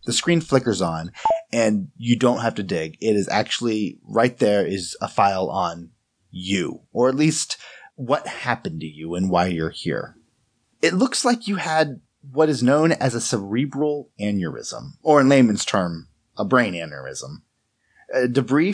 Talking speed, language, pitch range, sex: 165 wpm, English, 100-140 Hz, male